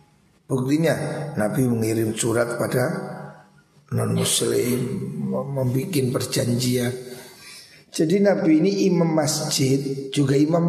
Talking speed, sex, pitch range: 95 wpm, male, 135-185 Hz